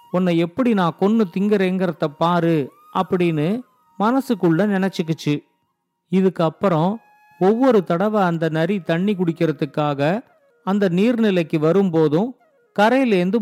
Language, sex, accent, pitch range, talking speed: Tamil, male, native, 170-220 Hz, 90 wpm